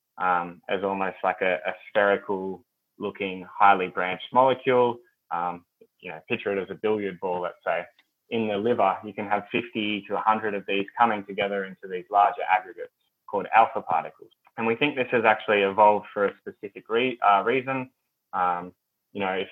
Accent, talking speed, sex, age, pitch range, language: Australian, 180 wpm, male, 20-39, 95-115 Hz, English